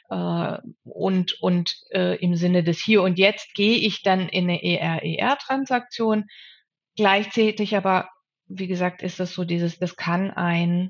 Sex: female